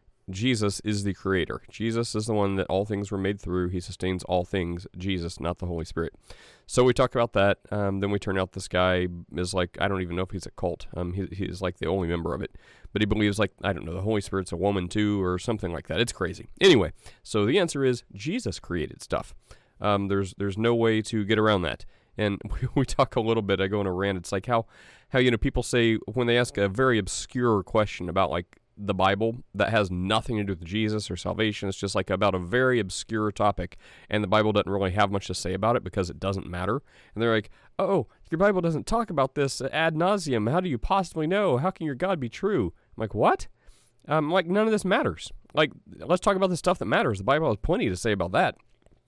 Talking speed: 245 wpm